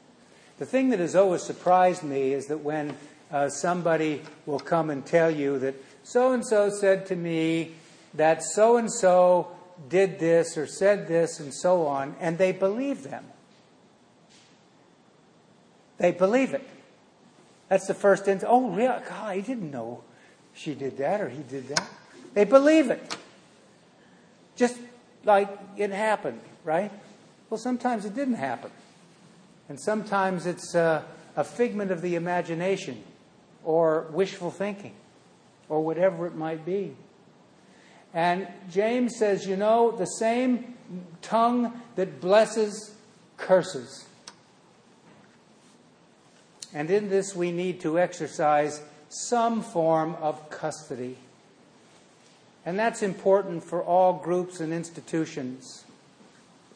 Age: 60-79